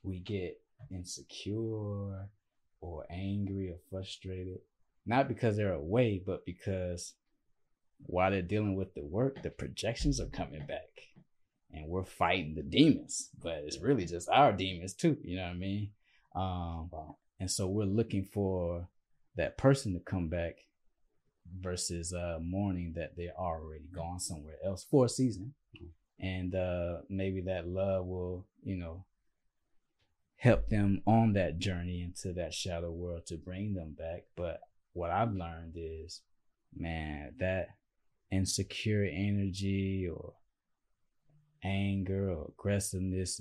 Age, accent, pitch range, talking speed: 20-39, American, 85-100 Hz, 140 wpm